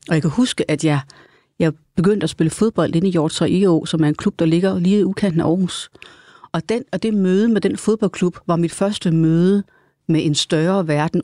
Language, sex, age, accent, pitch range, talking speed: Danish, female, 30-49, native, 160-195 Hz, 225 wpm